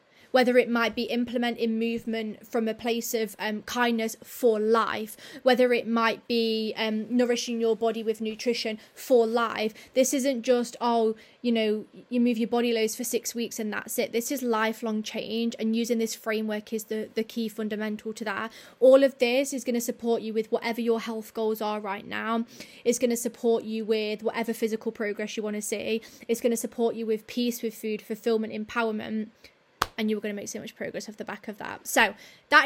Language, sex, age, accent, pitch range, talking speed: English, female, 20-39, British, 220-245 Hz, 200 wpm